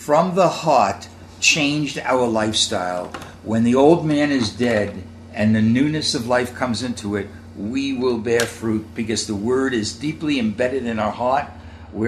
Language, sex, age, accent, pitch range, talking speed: English, male, 60-79, American, 100-130 Hz, 170 wpm